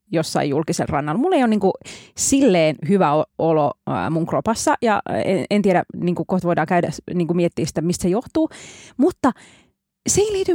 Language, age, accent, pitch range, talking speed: Finnish, 20-39, native, 175-235 Hz, 175 wpm